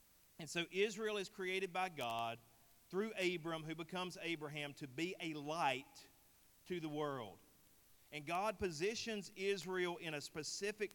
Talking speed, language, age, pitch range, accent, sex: 140 wpm, English, 40-59, 150-185 Hz, American, male